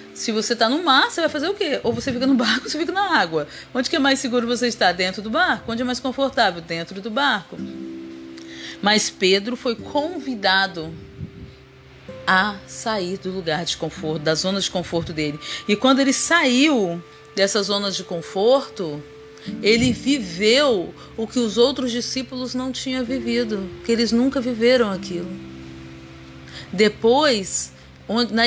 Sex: female